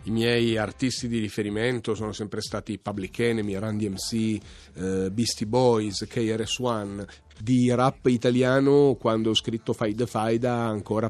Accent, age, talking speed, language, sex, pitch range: native, 40-59, 130 wpm, Italian, male, 105-125 Hz